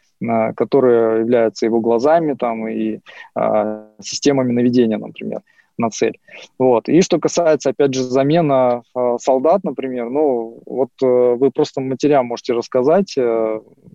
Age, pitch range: 20-39, 115-140 Hz